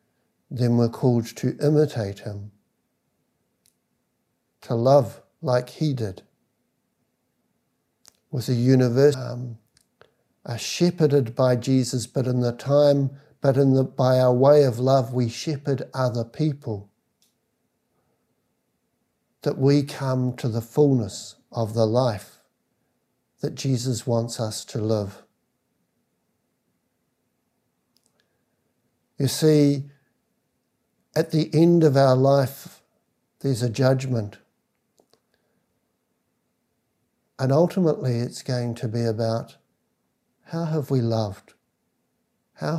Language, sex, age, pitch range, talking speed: English, male, 60-79, 120-140 Hz, 105 wpm